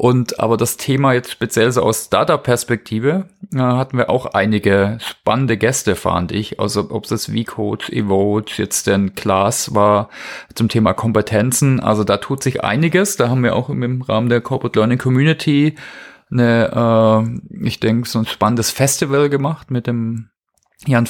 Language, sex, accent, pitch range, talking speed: English, male, German, 110-135 Hz, 160 wpm